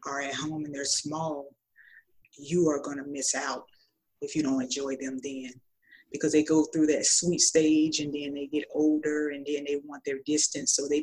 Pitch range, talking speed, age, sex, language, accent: 145-165 Hz, 205 wpm, 20-39, female, English, American